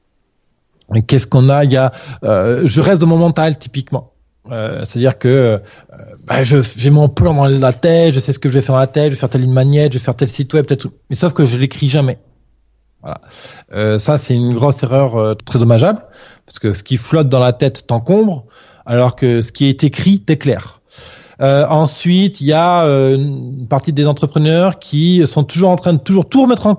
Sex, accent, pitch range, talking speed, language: male, French, 130-175 Hz, 230 wpm, French